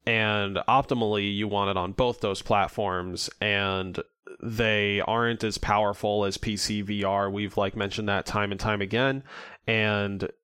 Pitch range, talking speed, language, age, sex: 100-120 Hz, 150 wpm, English, 20-39, male